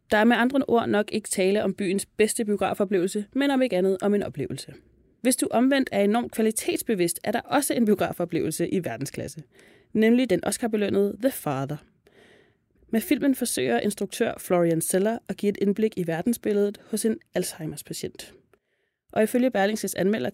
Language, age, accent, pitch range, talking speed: Danish, 30-49, native, 175-230 Hz, 165 wpm